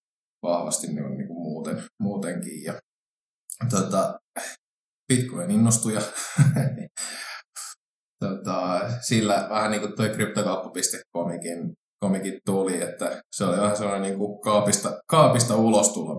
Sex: male